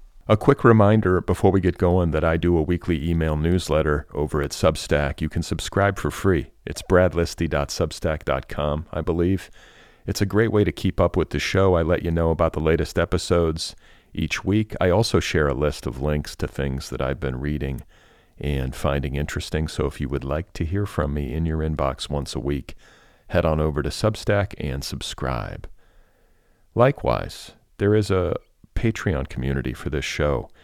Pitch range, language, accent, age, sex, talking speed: 75-95 Hz, English, American, 40-59, male, 180 wpm